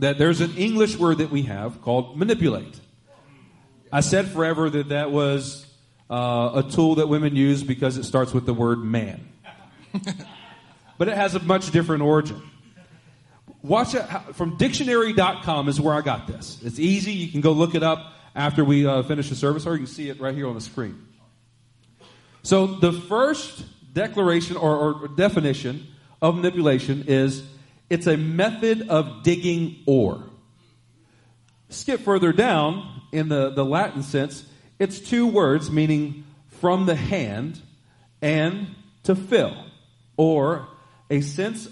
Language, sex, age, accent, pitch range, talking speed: English, male, 40-59, American, 130-175 Hz, 150 wpm